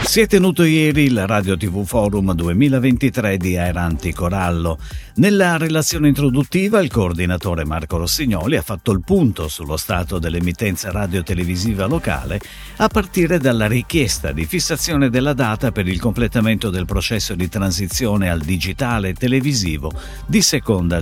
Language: Italian